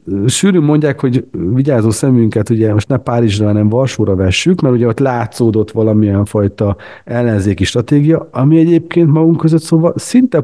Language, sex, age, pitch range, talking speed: Hungarian, male, 50-69, 105-135 Hz, 150 wpm